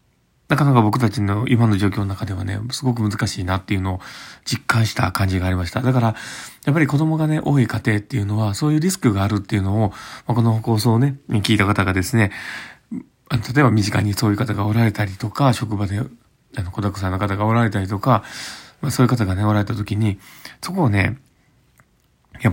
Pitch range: 105-130 Hz